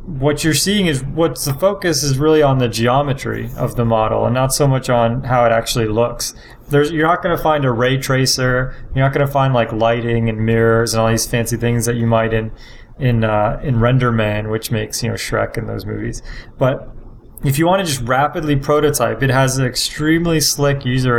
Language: English